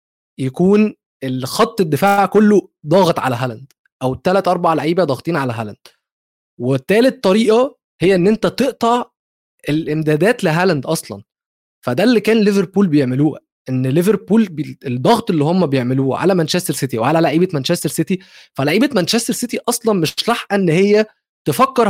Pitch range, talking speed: 160-220 Hz, 140 wpm